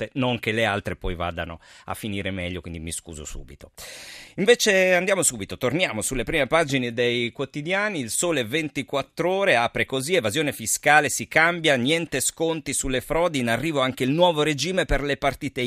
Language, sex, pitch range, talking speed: Italian, male, 95-145 Hz, 170 wpm